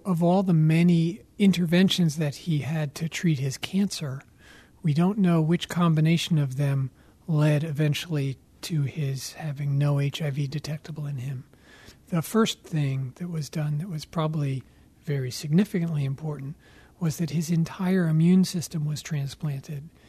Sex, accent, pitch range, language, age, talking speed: male, American, 150-175 Hz, English, 40-59, 145 wpm